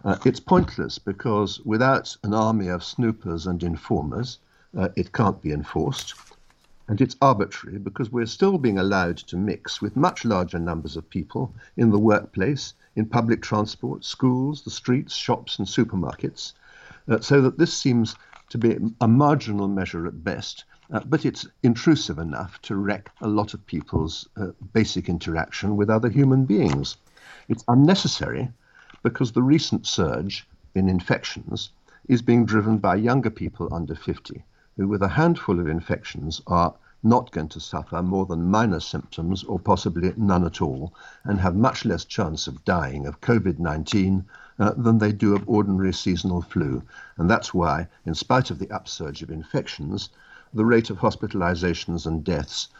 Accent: British